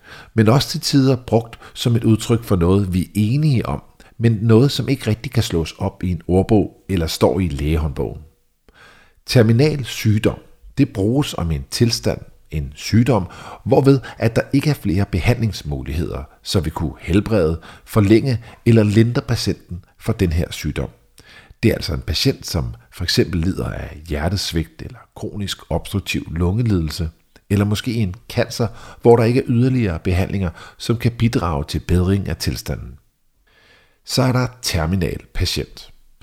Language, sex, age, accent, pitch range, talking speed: Danish, male, 50-69, native, 80-115 Hz, 155 wpm